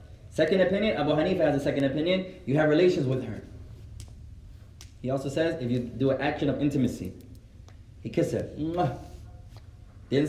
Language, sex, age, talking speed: English, male, 20-39, 155 wpm